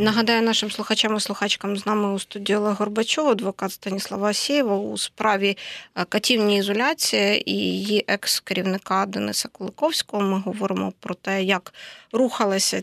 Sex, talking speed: female, 135 wpm